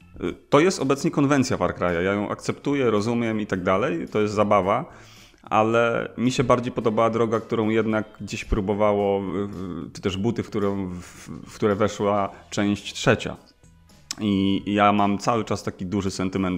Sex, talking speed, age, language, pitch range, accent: male, 150 wpm, 30-49, Polish, 100-120 Hz, native